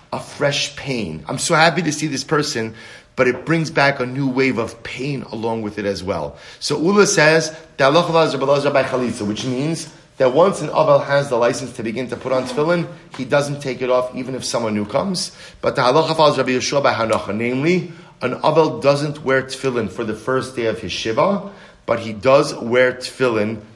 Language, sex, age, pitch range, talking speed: English, male, 30-49, 120-150 Hz, 180 wpm